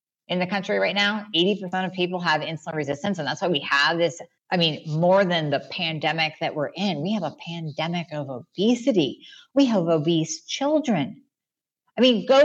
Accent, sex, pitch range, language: American, female, 155-210 Hz, English